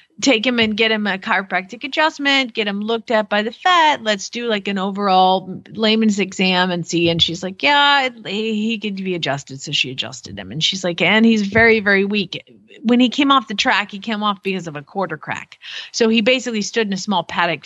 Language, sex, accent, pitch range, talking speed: English, female, American, 180-230 Hz, 225 wpm